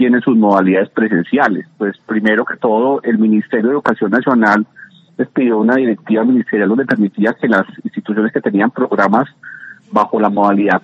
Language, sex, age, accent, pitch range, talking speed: Spanish, male, 40-59, Colombian, 110-145 Hz, 160 wpm